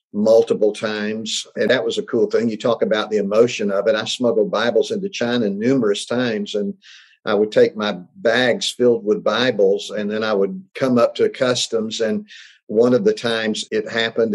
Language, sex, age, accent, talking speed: English, male, 50-69, American, 190 wpm